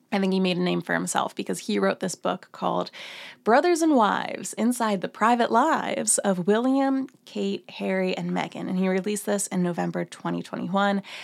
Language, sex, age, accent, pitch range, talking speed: English, female, 20-39, American, 185-240 Hz, 180 wpm